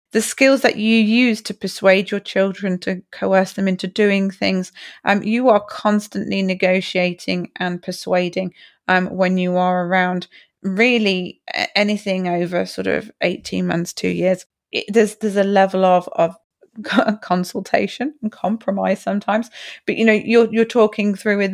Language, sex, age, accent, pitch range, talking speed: English, female, 30-49, British, 185-220 Hz, 155 wpm